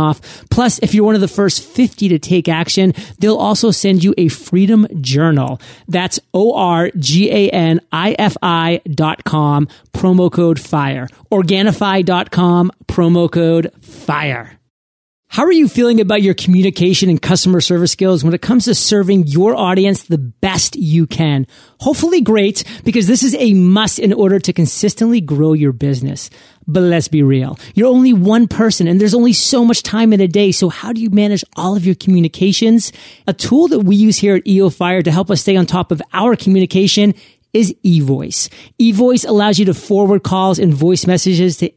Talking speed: 175 wpm